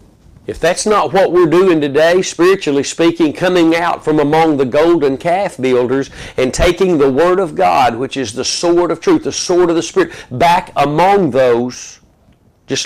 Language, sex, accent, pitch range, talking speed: English, male, American, 140-180 Hz, 175 wpm